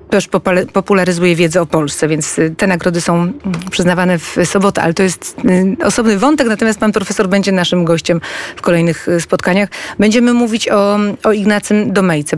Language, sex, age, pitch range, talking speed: Polish, female, 30-49, 180-220 Hz, 155 wpm